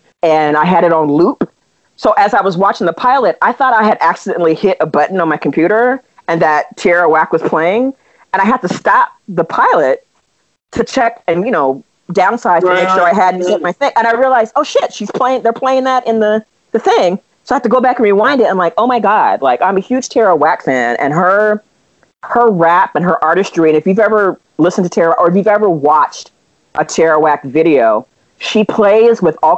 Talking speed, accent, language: 230 wpm, American, English